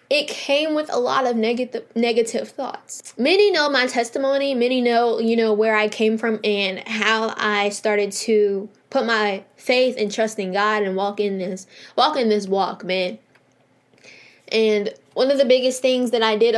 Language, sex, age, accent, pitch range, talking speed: English, female, 10-29, American, 210-245 Hz, 185 wpm